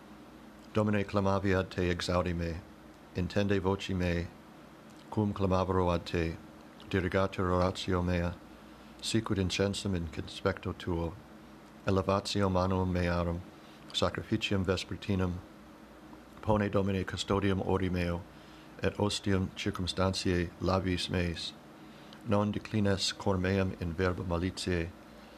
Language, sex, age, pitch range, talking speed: English, male, 60-79, 90-100 Hz, 95 wpm